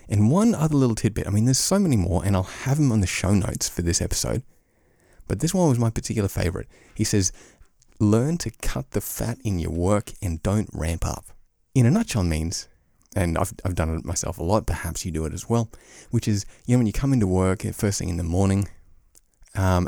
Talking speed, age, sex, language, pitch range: 230 wpm, 30-49, male, English, 85-115 Hz